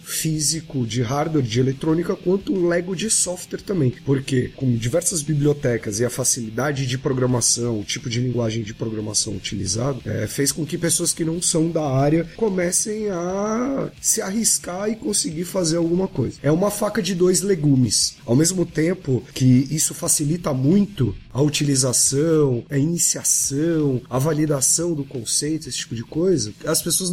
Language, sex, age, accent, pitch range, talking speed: Portuguese, male, 30-49, Brazilian, 140-180 Hz, 160 wpm